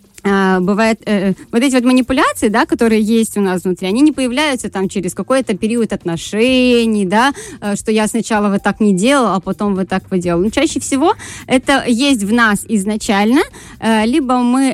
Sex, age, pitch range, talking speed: female, 20-39, 200-250 Hz, 185 wpm